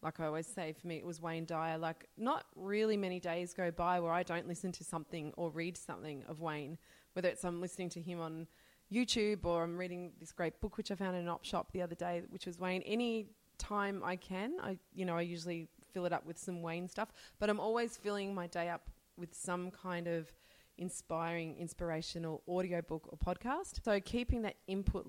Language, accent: English, Australian